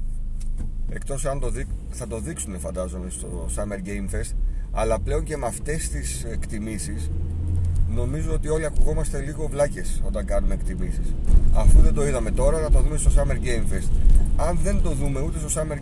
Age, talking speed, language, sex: 30-49, 180 wpm, Greek, male